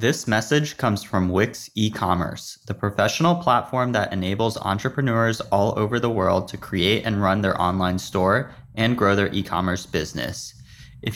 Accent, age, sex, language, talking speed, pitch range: American, 20-39, male, English, 155 wpm, 100-125 Hz